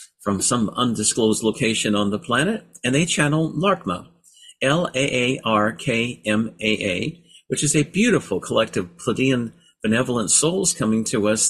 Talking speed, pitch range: 120 wpm, 105-140 Hz